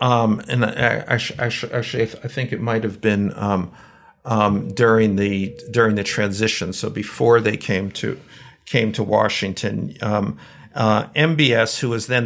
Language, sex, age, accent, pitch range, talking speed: Dutch, male, 50-69, American, 110-135 Hz, 160 wpm